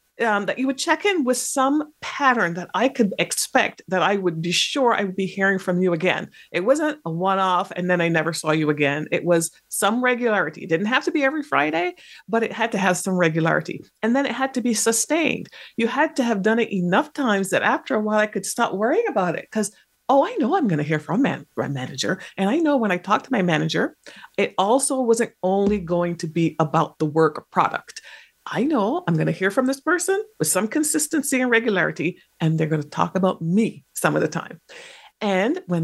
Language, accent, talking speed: English, American, 235 wpm